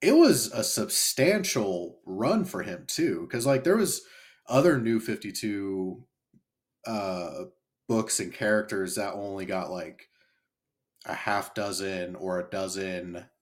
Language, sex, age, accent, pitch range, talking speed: English, male, 30-49, American, 95-130 Hz, 130 wpm